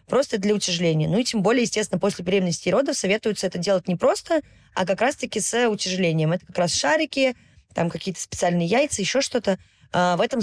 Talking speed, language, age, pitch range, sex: 195 wpm, Russian, 20-39, 170-205 Hz, female